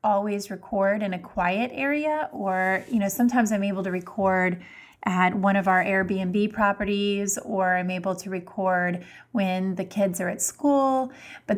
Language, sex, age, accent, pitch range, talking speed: English, female, 30-49, American, 185-215 Hz, 165 wpm